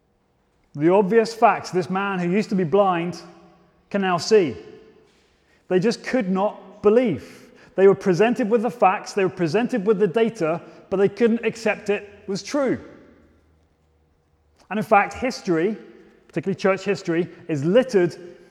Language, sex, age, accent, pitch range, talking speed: English, male, 30-49, British, 175-215 Hz, 150 wpm